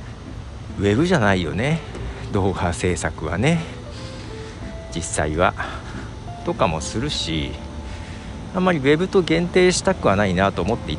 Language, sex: Japanese, male